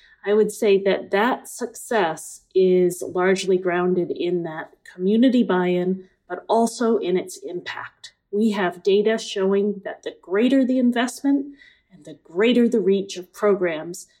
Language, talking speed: English, 145 wpm